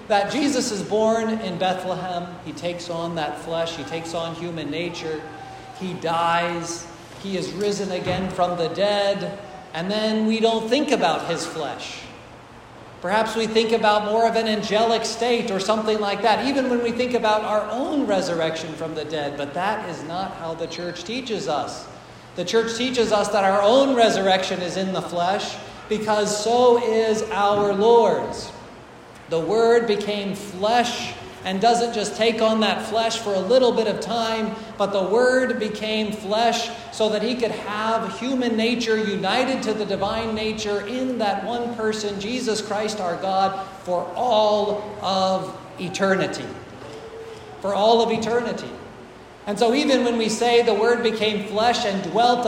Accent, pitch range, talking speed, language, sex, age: American, 190-230 Hz, 165 wpm, English, male, 40-59